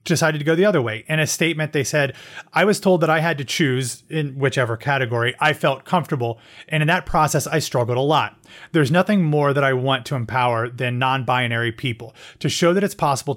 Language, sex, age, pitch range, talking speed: English, male, 30-49, 130-160 Hz, 220 wpm